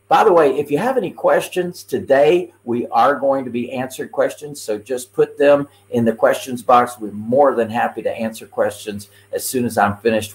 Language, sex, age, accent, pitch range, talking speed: English, male, 50-69, American, 105-145 Hz, 210 wpm